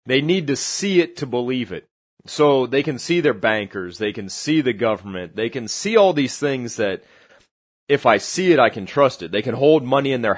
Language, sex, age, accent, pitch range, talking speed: English, male, 30-49, American, 115-155 Hz, 230 wpm